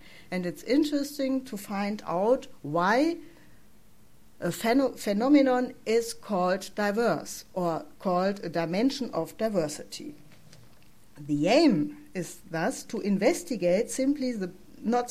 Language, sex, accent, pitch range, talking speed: English, female, German, 175-255 Hz, 110 wpm